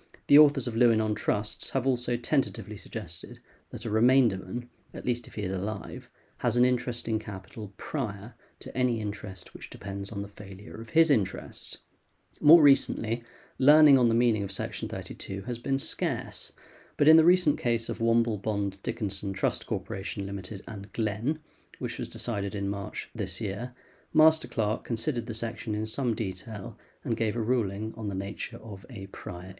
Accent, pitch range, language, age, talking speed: British, 105-125 Hz, English, 40-59, 175 wpm